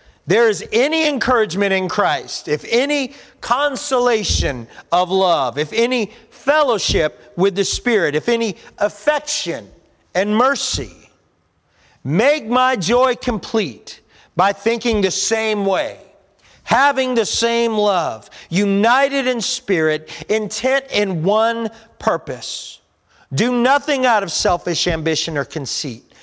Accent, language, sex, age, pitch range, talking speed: American, English, male, 40-59, 185-240 Hz, 115 wpm